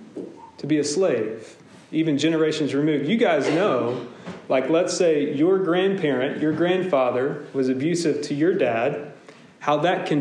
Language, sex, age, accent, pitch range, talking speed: English, male, 40-59, American, 150-200 Hz, 145 wpm